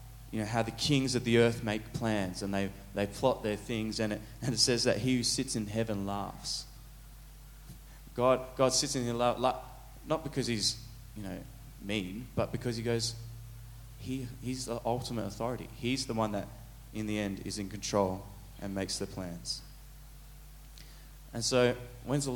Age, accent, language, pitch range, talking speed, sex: 20-39, Australian, English, 105-130 Hz, 175 wpm, male